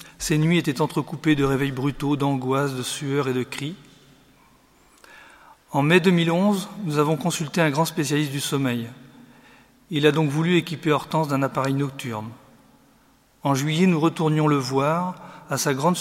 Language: French